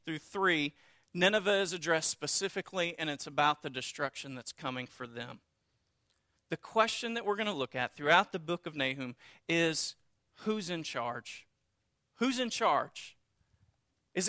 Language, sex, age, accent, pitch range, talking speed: English, male, 40-59, American, 155-230 Hz, 150 wpm